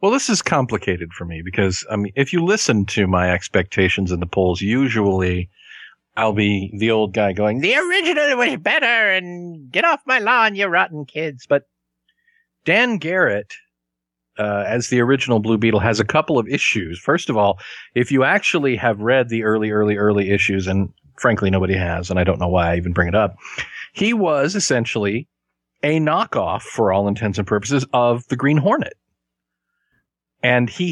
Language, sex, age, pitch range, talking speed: English, male, 50-69, 100-140 Hz, 180 wpm